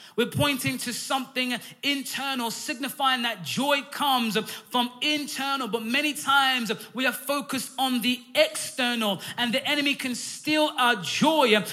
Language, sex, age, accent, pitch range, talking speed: English, male, 20-39, British, 230-275 Hz, 140 wpm